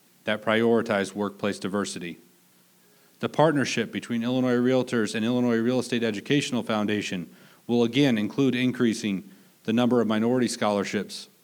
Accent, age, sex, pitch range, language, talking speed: American, 40-59, male, 110-125 Hz, English, 125 wpm